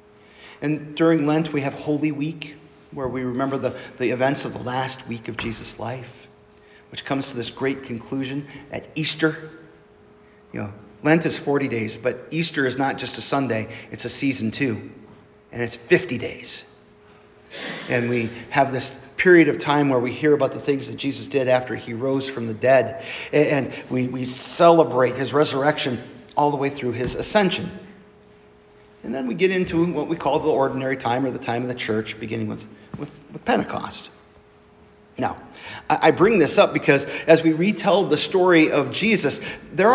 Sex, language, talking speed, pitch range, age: male, English, 180 wpm, 125-160 Hz, 40-59